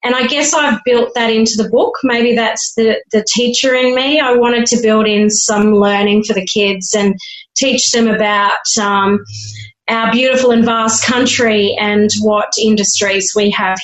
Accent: Australian